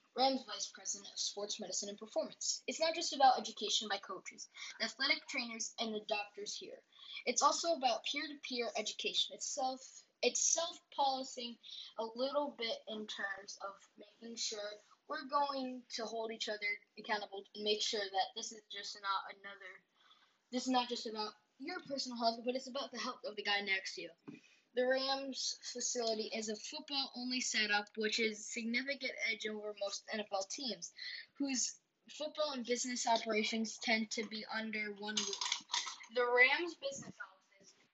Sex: female